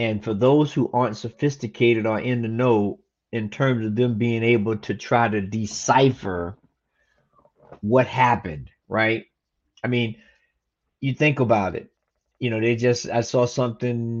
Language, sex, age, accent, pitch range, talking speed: English, male, 30-49, American, 110-130 Hz, 150 wpm